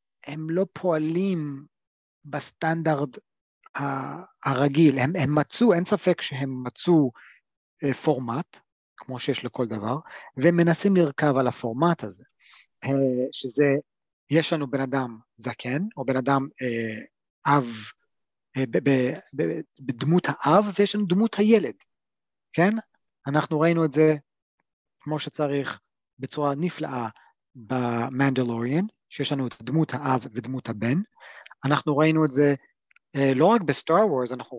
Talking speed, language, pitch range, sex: 125 wpm, Hebrew, 130-165 Hz, male